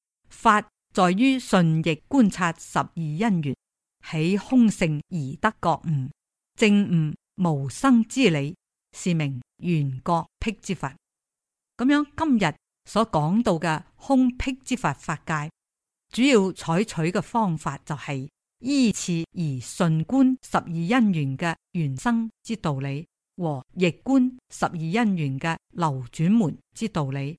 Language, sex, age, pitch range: Chinese, female, 50-69, 155-230 Hz